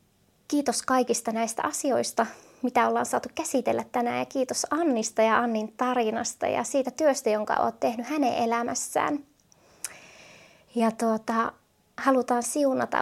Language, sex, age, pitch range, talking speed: Finnish, female, 20-39, 230-270 Hz, 125 wpm